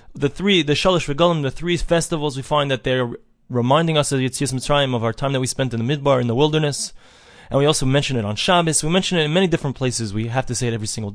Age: 20-39